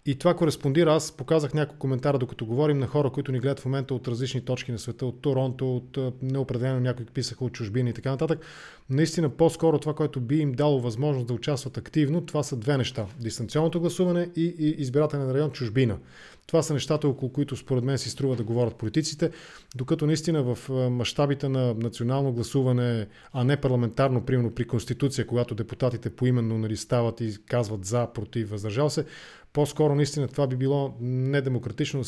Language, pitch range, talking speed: English, 120-150 Hz, 180 wpm